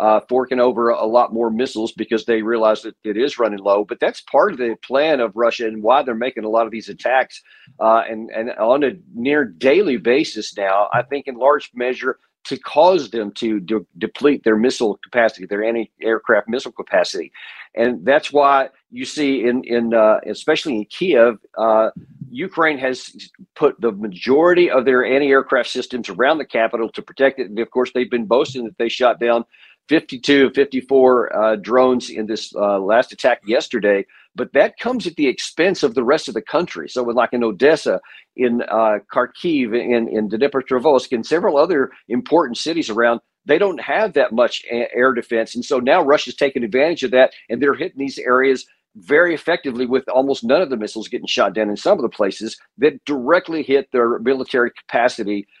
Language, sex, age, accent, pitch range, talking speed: English, male, 50-69, American, 110-135 Hz, 190 wpm